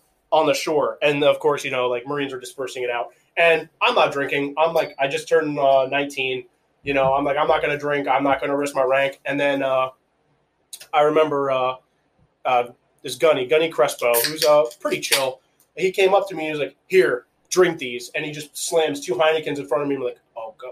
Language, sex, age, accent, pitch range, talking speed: English, male, 20-39, American, 130-160 Hz, 230 wpm